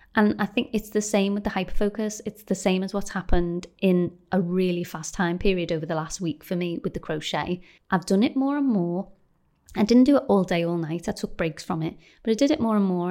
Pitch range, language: 170-210 Hz, English